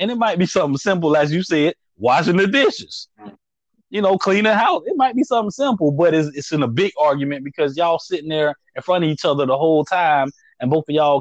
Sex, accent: male, American